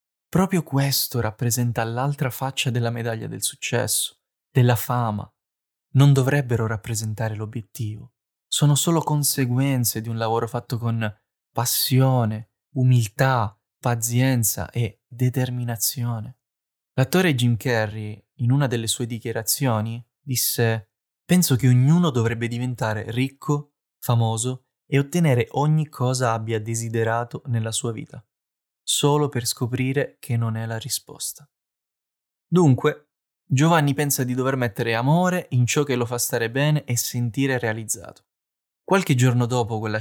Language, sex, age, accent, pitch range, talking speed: Italian, male, 20-39, native, 115-140 Hz, 125 wpm